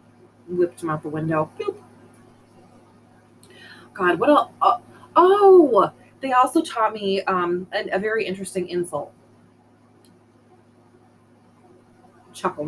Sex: female